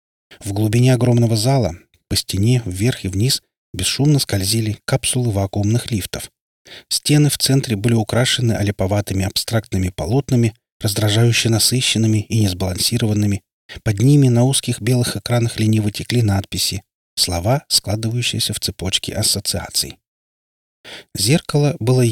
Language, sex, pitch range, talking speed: Russian, male, 100-125 Hz, 115 wpm